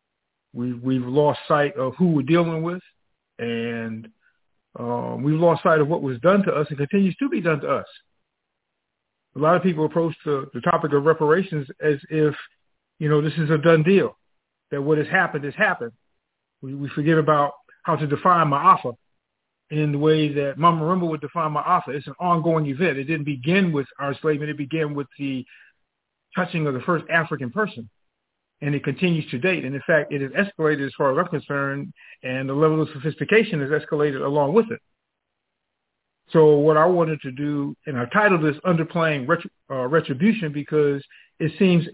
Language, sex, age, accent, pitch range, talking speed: English, male, 50-69, American, 145-170 Hz, 185 wpm